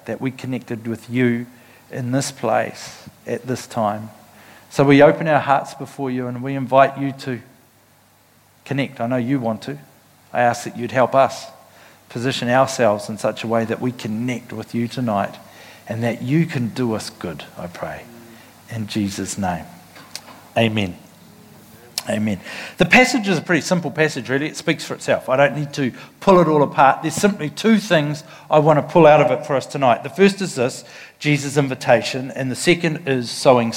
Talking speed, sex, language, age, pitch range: 190 wpm, male, English, 50-69, 125-175 Hz